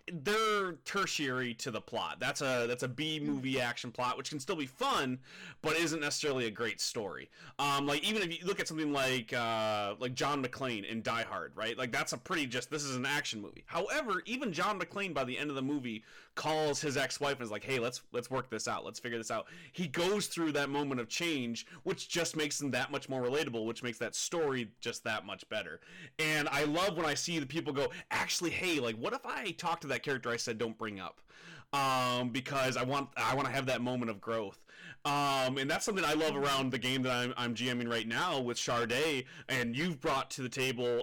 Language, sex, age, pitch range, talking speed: English, male, 30-49, 120-155 Hz, 235 wpm